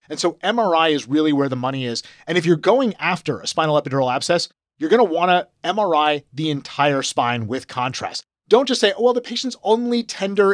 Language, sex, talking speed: English, male, 215 wpm